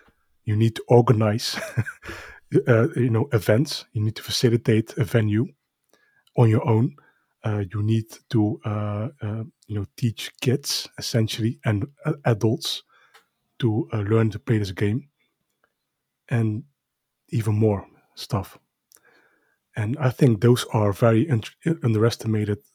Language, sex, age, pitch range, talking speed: English, male, 30-49, 105-120 Hz, 130 wpm